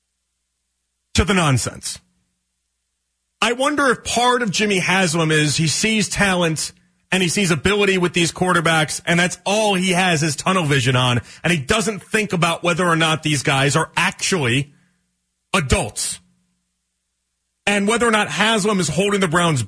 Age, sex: 40-59, male